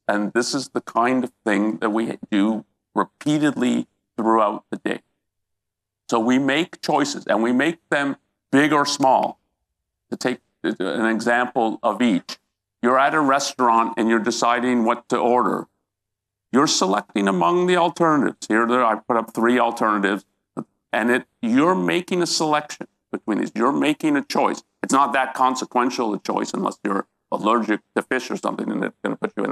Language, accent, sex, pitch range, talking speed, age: English, American, male, 110-155 Hz, 175 wpm, 50-69